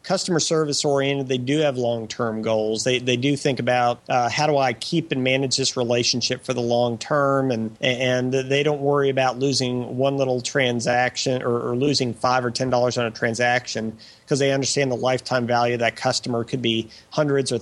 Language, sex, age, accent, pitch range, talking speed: English, male, 40-59, American, 125-155 Hz, 205 wpm